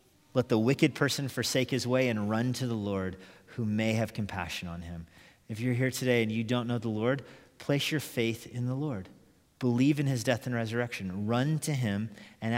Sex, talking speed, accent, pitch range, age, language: male, 210 wpm, American, 110-140 Hz, 40-59, English